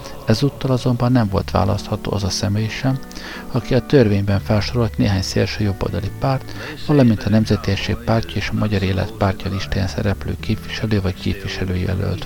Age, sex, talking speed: 50-69, male, 155 wpm